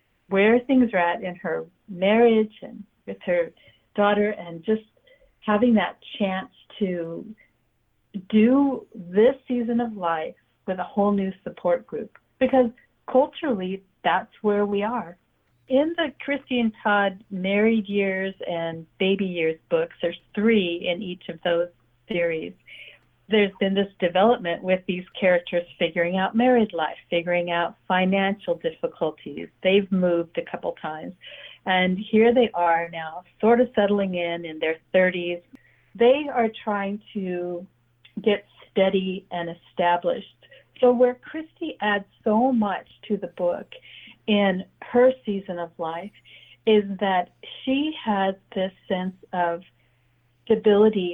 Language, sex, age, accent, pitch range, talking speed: English, female, 50-69, American, 175-220 Hz, 135 wpm